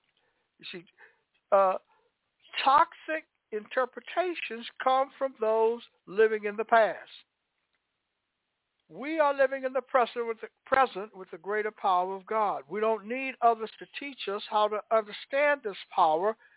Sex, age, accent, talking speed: male, 60-79, American, 140 wpm